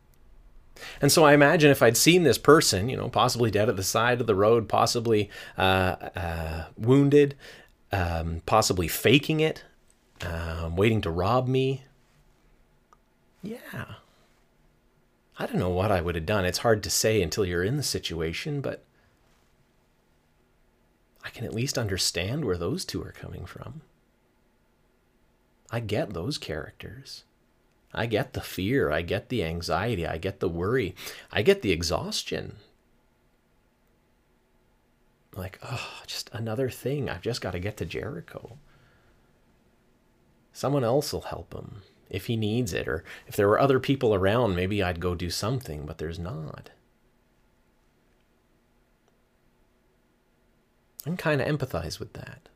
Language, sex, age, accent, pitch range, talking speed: English, male, 30-49, American, 90-130 Hz, 140 wpm